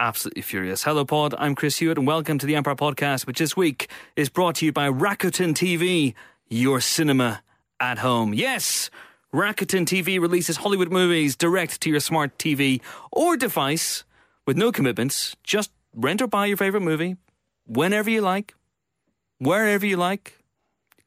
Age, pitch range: 30-49, 115-175 Hz